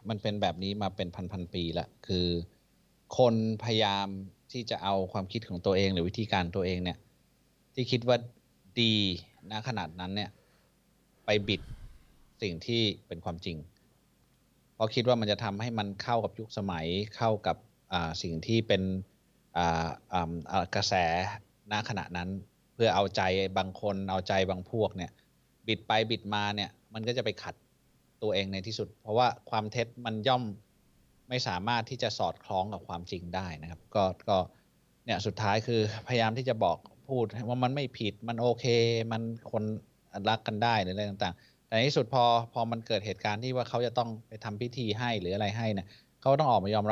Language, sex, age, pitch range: Thai, male, 20-39, 95-115 Hz